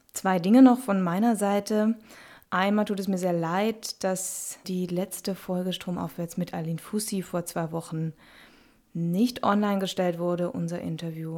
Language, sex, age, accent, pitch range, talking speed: German, female, 20-39, German, 170-195 Hz, 155 wpm